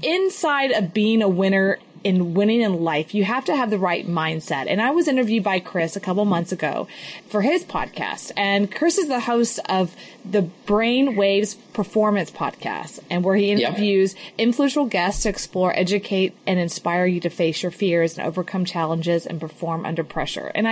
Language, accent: English, American